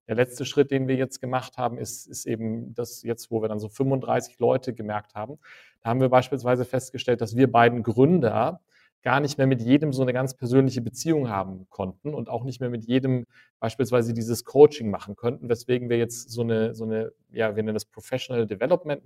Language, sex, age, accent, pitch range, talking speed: German, male, 40-59, German, 115-130 Hz, 210 wpm